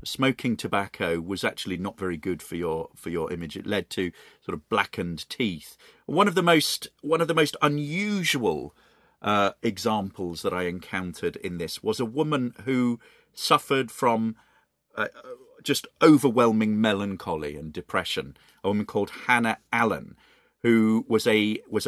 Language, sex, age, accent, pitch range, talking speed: English, male, 40-59, British, 110-155 Hz, 155 wpm